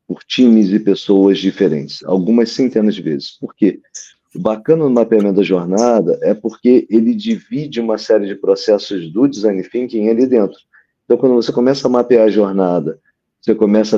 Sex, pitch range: male, 105-140 Hz